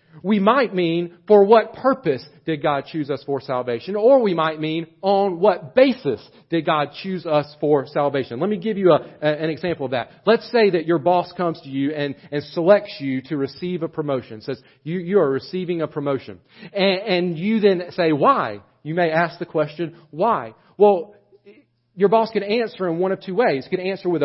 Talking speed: 205 wpm